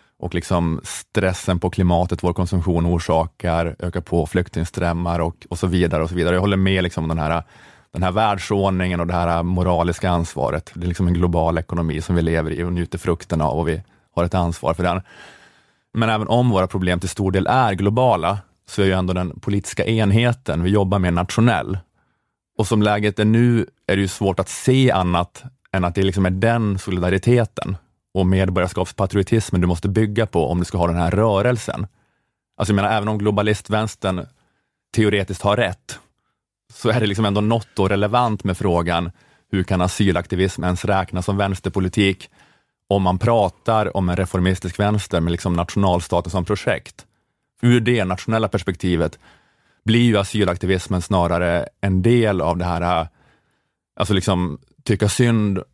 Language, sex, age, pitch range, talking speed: Swedish, male, 30-49, 90-105 Hz, 175 wpm